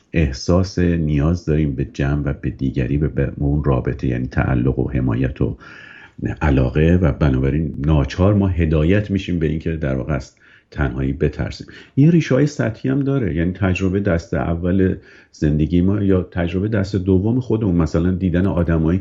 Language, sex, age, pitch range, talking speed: Persian, male, 50-69, 75-95 Hz, 155 wpm